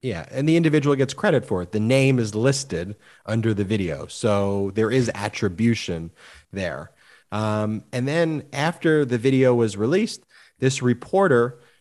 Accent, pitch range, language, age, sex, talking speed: American, 105-135 Hz, English, 30-49, male, 150 wpm